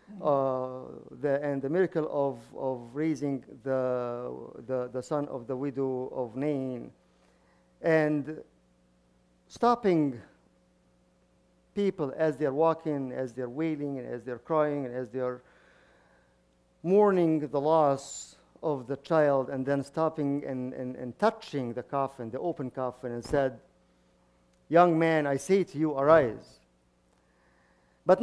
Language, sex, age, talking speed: English, male, 50-69, 140 wpm